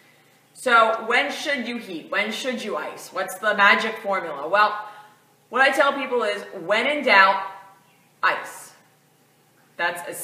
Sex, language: female, English